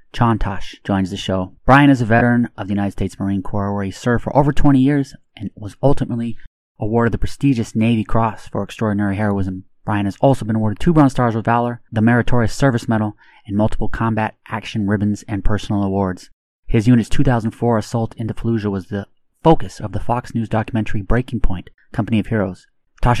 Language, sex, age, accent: English, male, 30-49, American